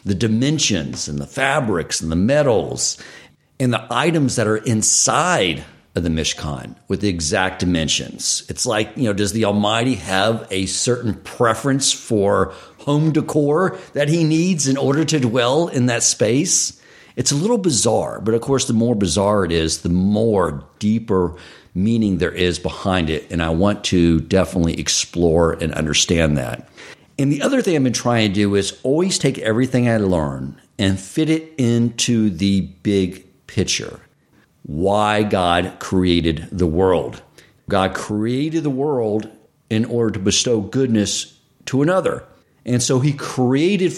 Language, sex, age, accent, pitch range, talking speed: English, male, 50-69, American, 95-140 Hz, 160 wpm